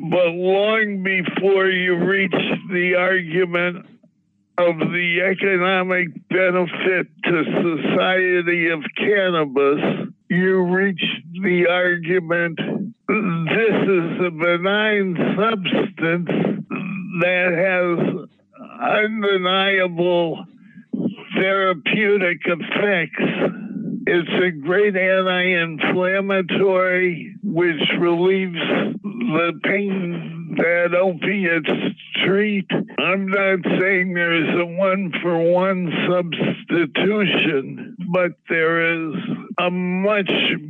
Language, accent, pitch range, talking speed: English, American, 175-200 Hz, 75 wpm